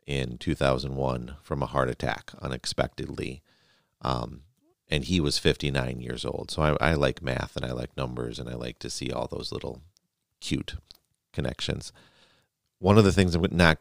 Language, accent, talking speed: English, American, 170 wpm